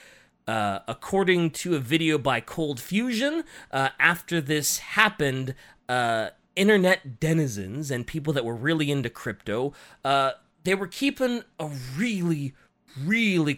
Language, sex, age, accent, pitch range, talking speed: English, male, 30-49, American, 130-180 Hz, 130 wpm